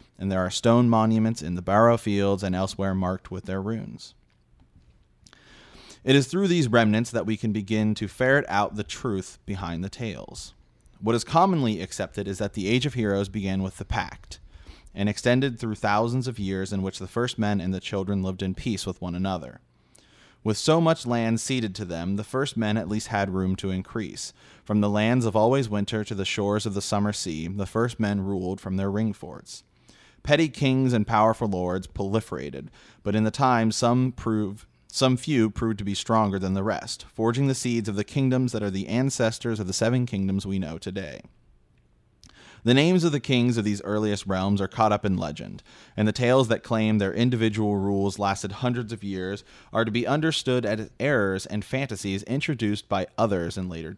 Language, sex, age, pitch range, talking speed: English, male, 30-49, 95-115 Hz, 200 wpm